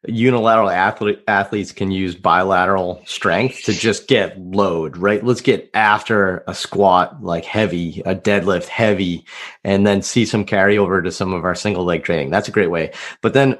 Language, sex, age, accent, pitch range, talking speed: English, male, 30-49, American, 95-115 Hz, 175 wpm